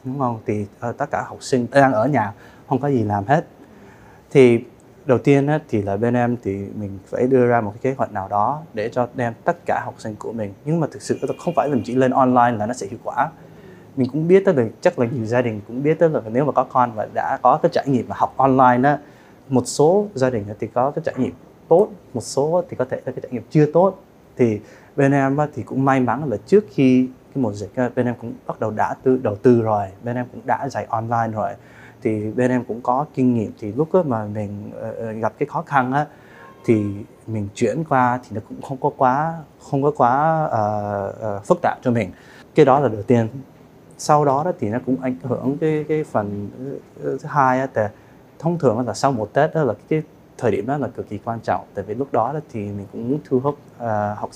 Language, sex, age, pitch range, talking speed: Vietnamese, male, 20-39, 110-140 Hz, 235 wpm